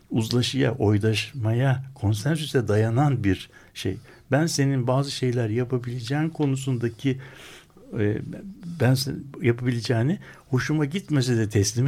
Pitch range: 120-160 Hz